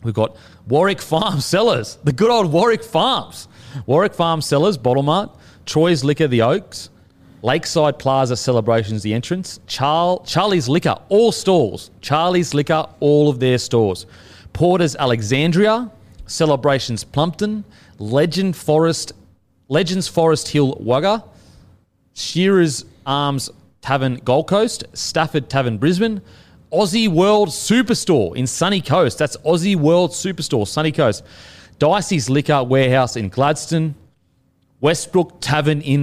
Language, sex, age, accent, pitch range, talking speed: English, male, 30-49, Australian, 125-170 Hz, 120 wpm